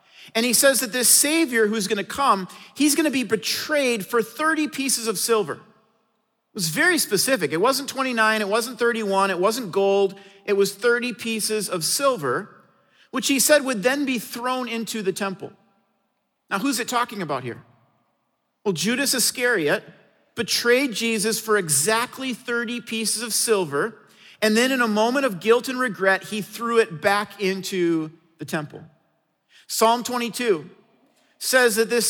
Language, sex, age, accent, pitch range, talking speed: English, male, 40-59, American, 200-250 Hz, 165 wpm